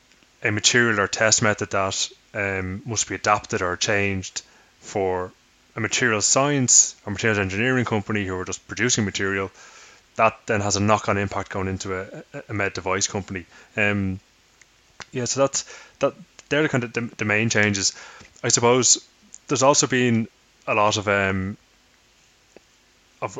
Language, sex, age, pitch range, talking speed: English, male, 20-39, 100-115 Hz, 155 wpm